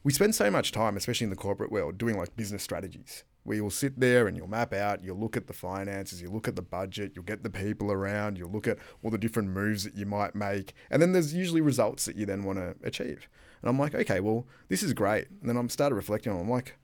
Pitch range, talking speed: 95-120 Hz, 270 wpm